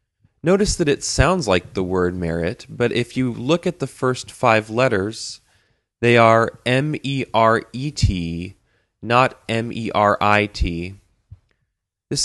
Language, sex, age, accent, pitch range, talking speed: English, male, 20-39, American, 100-130 Hz, 115 wpm